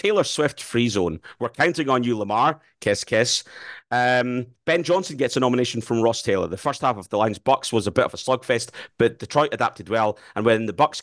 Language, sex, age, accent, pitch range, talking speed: English, male, 30-49, British, 105-130 Hz, 225 wpm